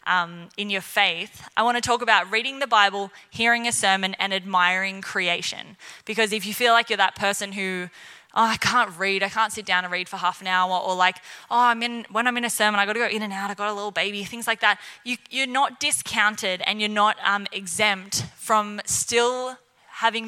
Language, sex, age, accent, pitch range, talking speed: English, female, 20-39, Australian, 190-230 Hz, 230 wpm